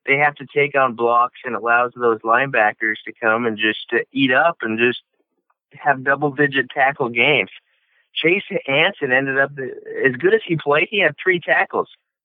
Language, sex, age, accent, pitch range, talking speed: English, male, 50-69, American, 115-185 Hz, 175 wpm